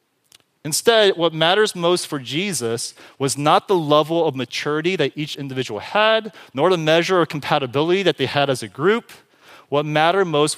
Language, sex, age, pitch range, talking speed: English, male, 30-49, 130-175 Hz, 170 wpm